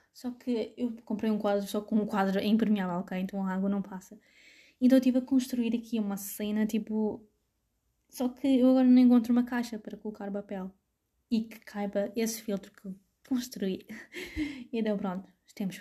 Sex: female